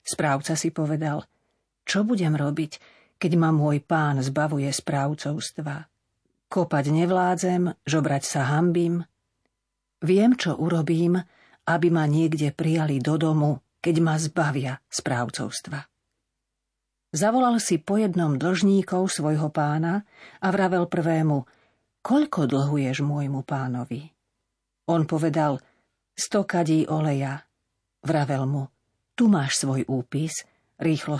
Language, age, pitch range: Slovak, 40-59, 145-175 Hz